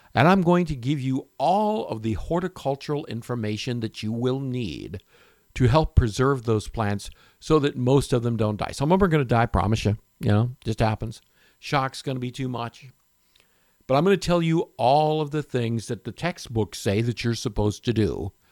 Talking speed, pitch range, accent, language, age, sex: 215 wpm, 105-140 Hz, American, English, 60-79, male